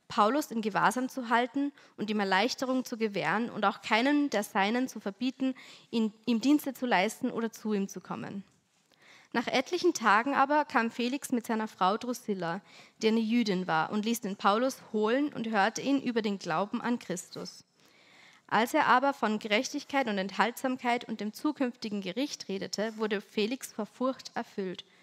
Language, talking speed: German, 170 wpm